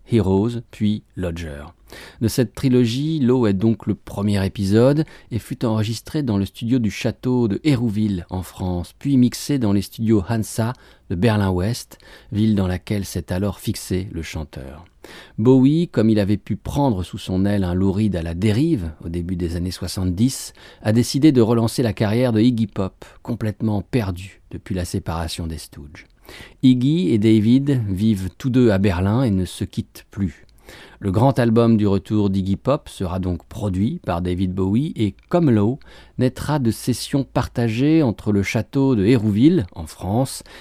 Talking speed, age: 170 wpm, 40-59